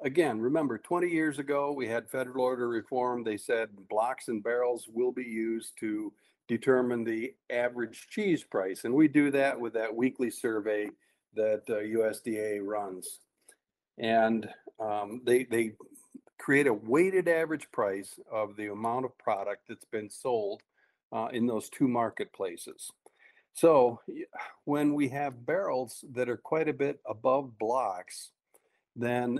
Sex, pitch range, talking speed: male, 115-145 Hz, 145 wpm